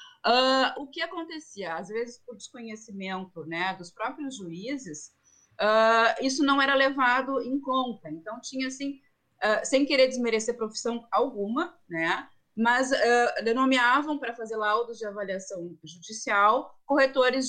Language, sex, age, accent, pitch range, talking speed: Portuguese, female, 30-49, Brazilian, 205-270 Hz, 135 wpm